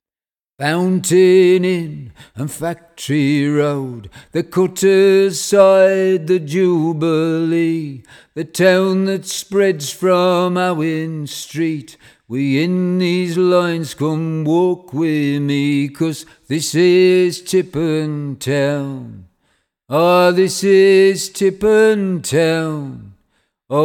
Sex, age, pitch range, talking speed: male, 50-69, 130-180 Hz, 95 wpm